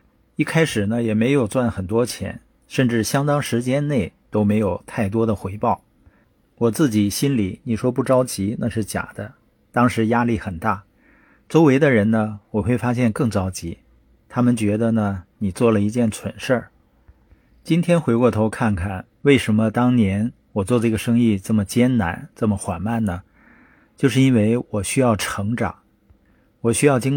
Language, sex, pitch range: Chinese, male, 105-125 Hz